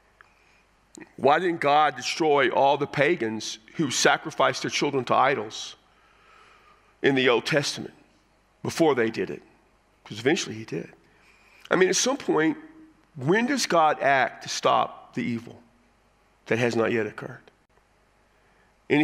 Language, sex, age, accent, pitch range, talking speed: English, male, 50-69, American, 115-155 Hz, 140 wpm